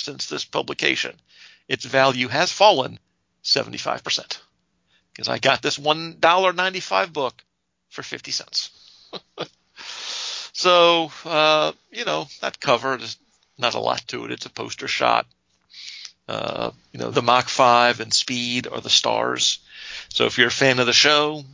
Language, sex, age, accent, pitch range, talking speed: English, male, 50-69, American, 115-145 Hz, 145 wpm